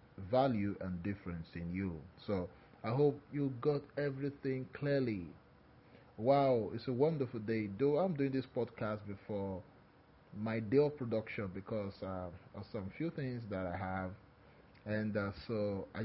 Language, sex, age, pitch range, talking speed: English, male, 30-49, 100-135 Hz, 155 wpm